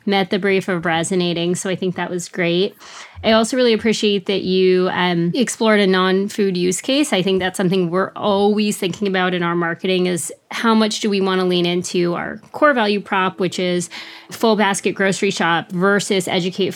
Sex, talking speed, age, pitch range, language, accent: female, 195 wpm, 30-49, 185-225 Hz, English, American